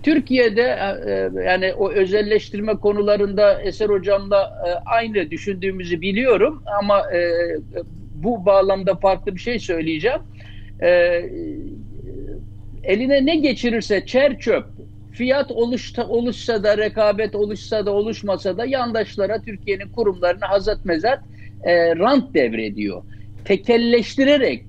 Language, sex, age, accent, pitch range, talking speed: Turkish, male, 60-79, native, 195-270 Hz, 105 wpm